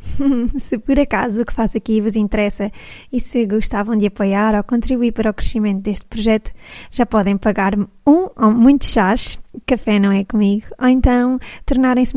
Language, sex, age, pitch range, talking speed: Portuguese, female, 20-39, 210-245 Hz, 175 wpm